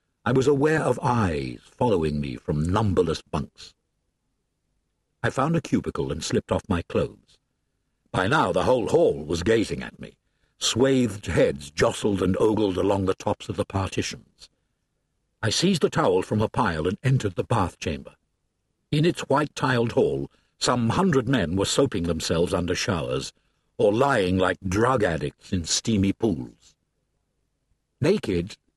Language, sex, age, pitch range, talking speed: English, male, 60-79, 90-130 Hz, 150 wpm